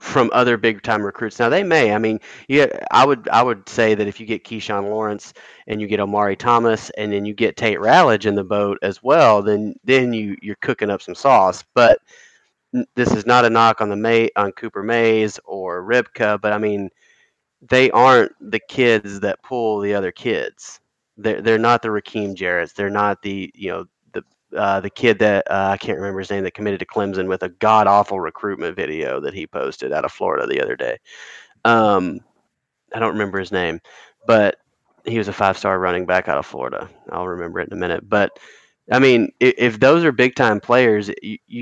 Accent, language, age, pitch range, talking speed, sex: American, English, 30-49, 100-125 Hz, 210 wpm, male